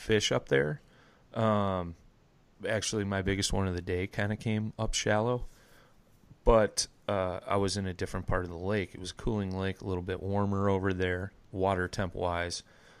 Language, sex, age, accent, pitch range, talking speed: English, male, 30-49, American, 90-105 Hz, 185 wpm